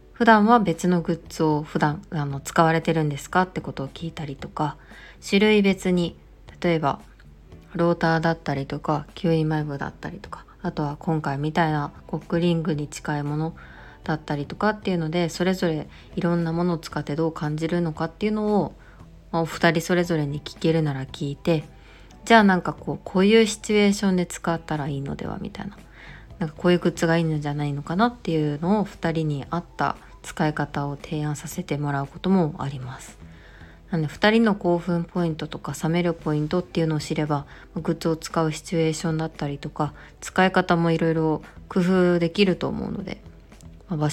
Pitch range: 150-175 Hz